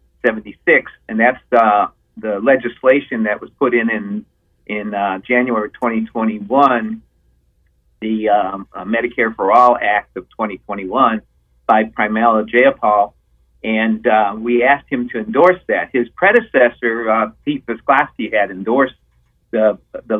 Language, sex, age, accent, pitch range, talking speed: English, male, 50-69, American, 100-125 Hz, 130 wpm